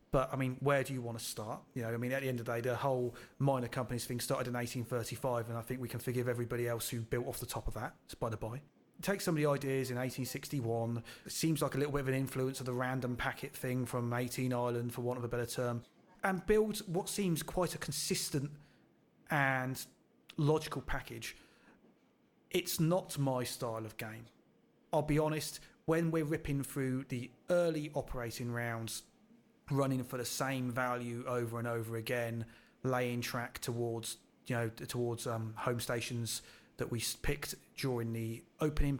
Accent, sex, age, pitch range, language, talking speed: British, male, 30-49, 120-140 Hz, English, 195 wpm